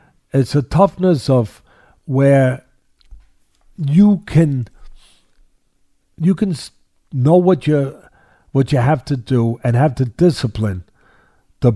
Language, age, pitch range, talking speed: English, 50-69, 120-165 Hz, 100 wpm